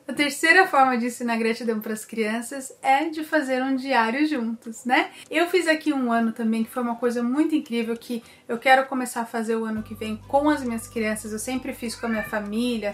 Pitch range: 220-255 Hz